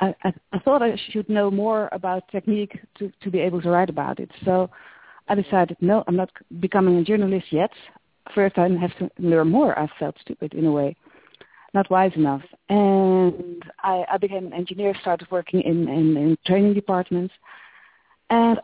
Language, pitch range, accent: English, 170-200 Hz, Dutch